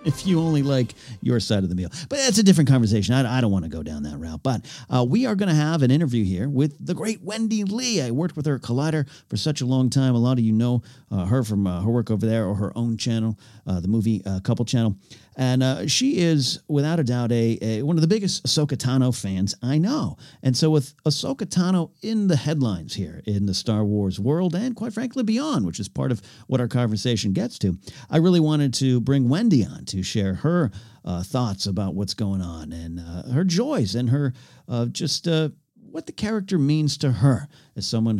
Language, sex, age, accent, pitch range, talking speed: English, male, 40-59, American, 110-155 Hz, 235 wpm